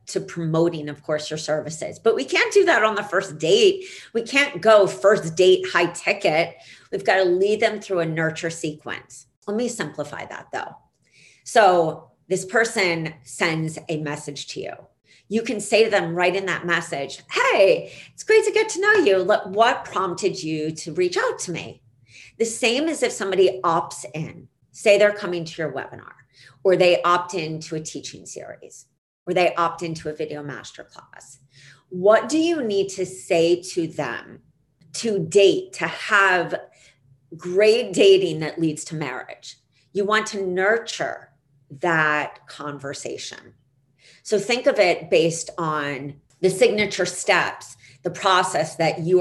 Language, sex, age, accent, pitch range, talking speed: English, female, 40-59, American, 150-205 Hz, 165 wpm